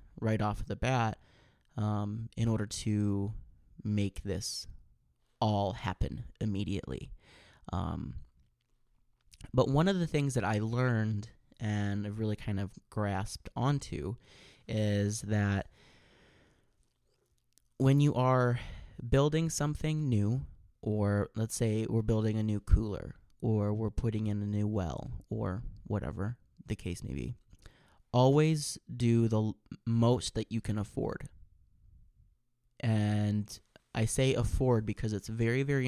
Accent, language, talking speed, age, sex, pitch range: American, English, 120 wpm, 20-39, male, 105-120 Hz